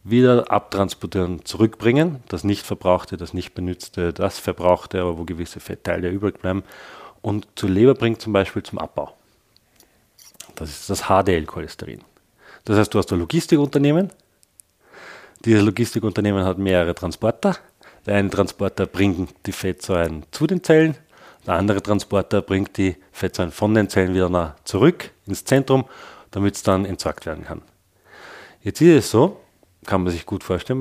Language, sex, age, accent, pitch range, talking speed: German, male, 40-59, German, 90-110 Hz, 150 wpm